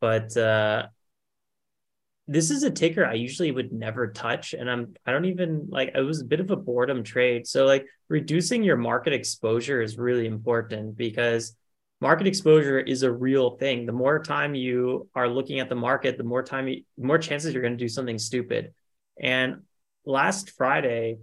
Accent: American